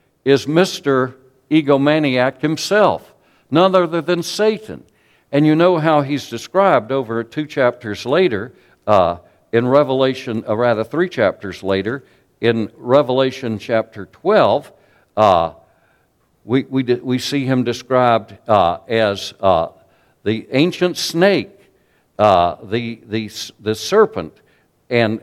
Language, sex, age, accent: English, male, 60-79, American